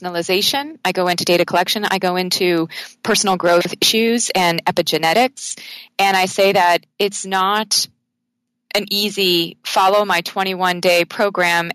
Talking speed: 135 wpm